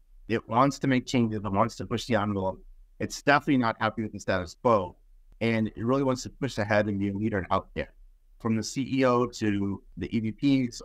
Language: English